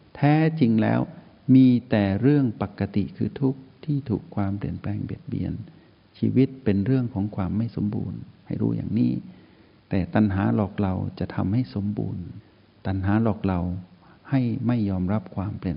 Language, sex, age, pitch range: Thai, male, 60-79, 95-115 Hz